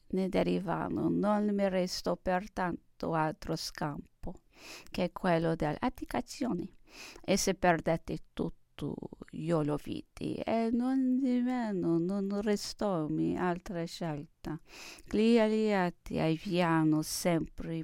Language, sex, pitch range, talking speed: English, female, 160-245 Hz, 100 wpm